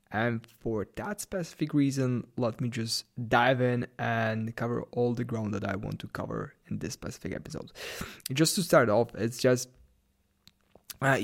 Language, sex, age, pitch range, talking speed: English, male, 20-39, 115-135 Hz, 165 wpm